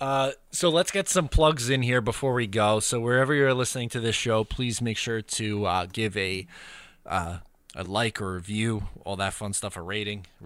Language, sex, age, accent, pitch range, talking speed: English, male, 20-39, American, 95-120 Hz, 220 wpm